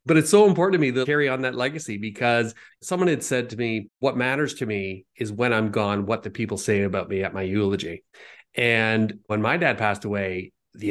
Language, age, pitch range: English, 30-49, 105-130 Hz